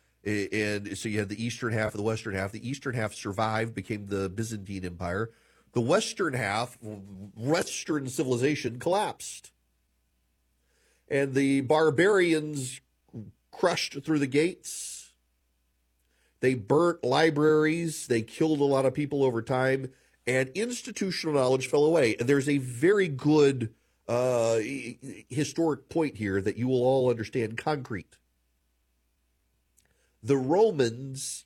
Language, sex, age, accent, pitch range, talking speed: English, male, 40-59, American, 90-135 Hz, 125 wpm